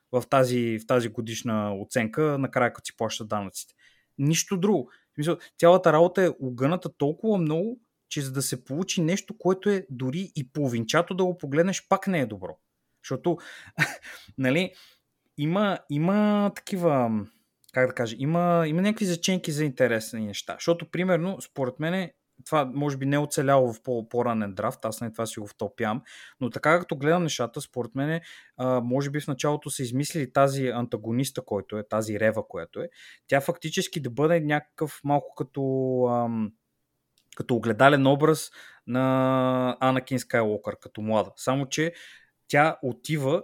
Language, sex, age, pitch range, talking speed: Bulgarian, male, 20-39, 120-165 Hz, 155 wpm